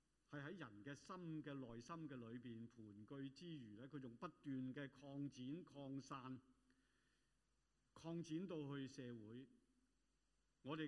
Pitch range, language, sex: 125-185 Hz, Chinese, male